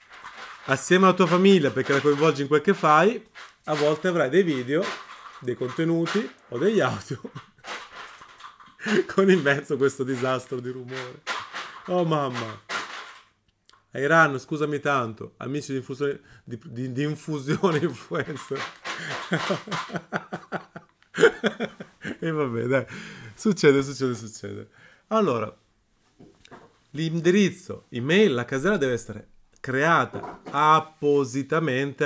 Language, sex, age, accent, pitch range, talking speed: Italian, male, 30-49, native, 125-165 Hz, 105 wpm